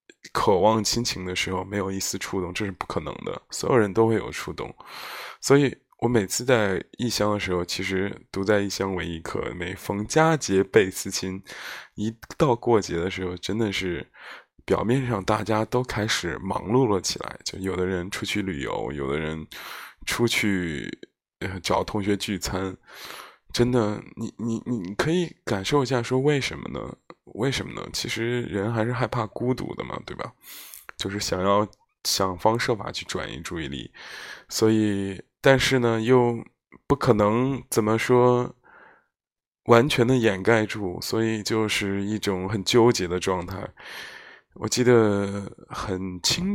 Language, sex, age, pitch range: Chinese, male, 20-39, 95-120 Hz